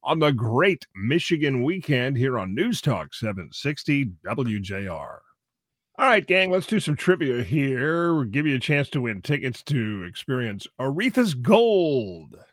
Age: 40-59